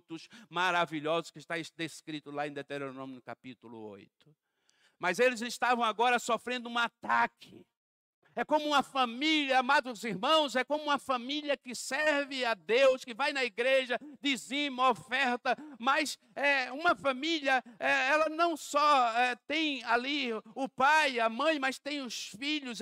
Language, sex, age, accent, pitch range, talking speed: Portuguese, male, 60-79, Brazilian, 185-275 Hz, 145 wpm